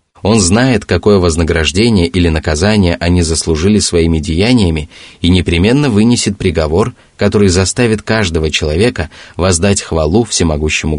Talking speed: 115 wpm